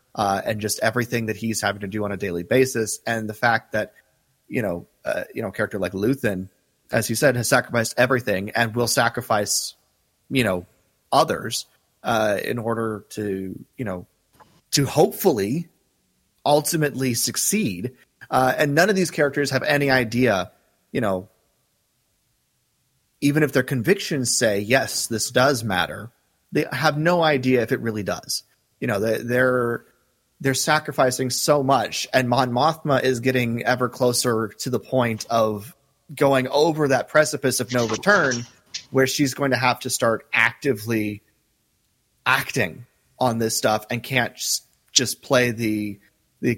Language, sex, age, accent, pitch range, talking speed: English, male, 30-49, American, 110-135 Hz, 155 wpm